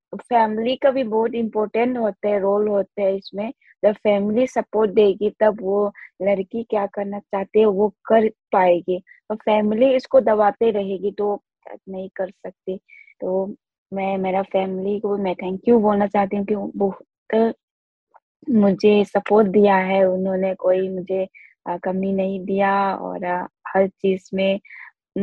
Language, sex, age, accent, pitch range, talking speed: Hindi, female, 20-39, native, 195-235 Hz, 140 wpm